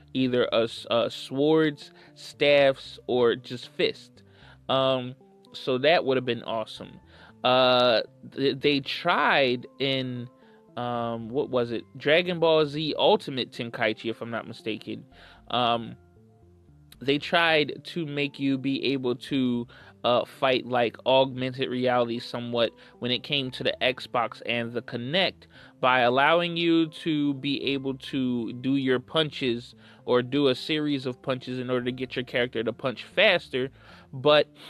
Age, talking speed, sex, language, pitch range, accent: 20-39, 140 wpm, male, English, 120-140 Hz, American